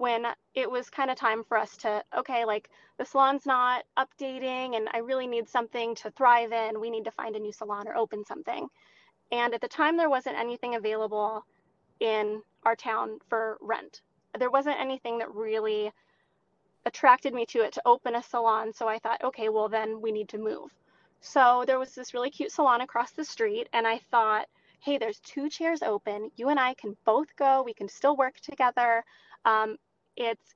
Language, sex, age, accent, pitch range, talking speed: English, female, 20-39, American, 220-260 Hz, 195 wpm